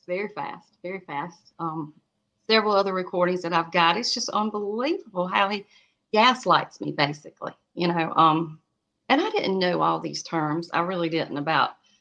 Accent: American